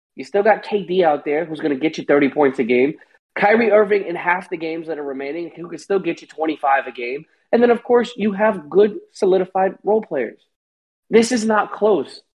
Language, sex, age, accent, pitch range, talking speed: English, male, 20-39, American, 145-195 Hz, 225 wpm